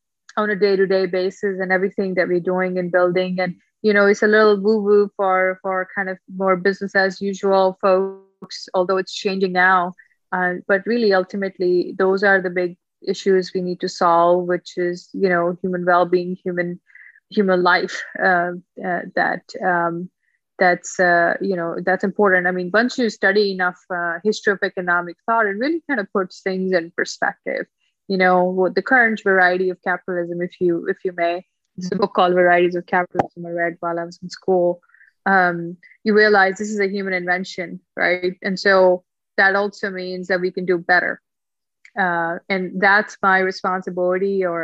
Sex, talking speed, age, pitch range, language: female, 180 wpm, 20-39, 180-200 Hz, English